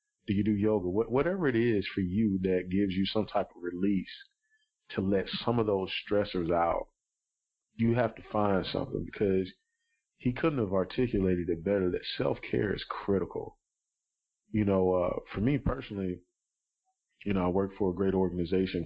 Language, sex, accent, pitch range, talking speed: English, male, American, 90-115 Hz, 170 wpm